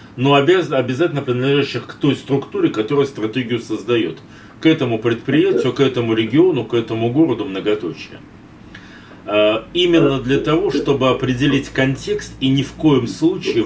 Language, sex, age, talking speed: Russian, male, 40-59, 130 wpm